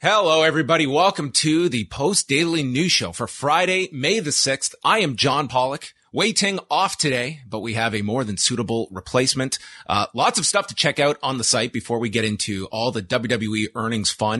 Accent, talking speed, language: American, 200 wpm, English